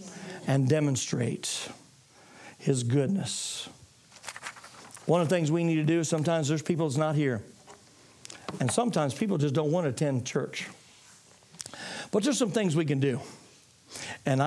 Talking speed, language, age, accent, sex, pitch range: 150 wpm, English, 60-79, American, male, 150-205 Hz